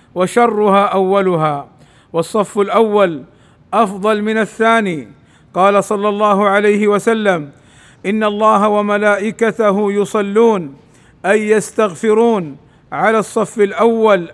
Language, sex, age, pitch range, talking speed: Arabic, male, 50-69, 190-220 Hz, 90 wpm